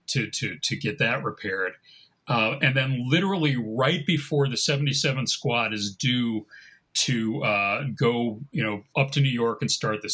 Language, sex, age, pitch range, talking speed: English, male, 40-59, 120-145 Hz, 170 wpm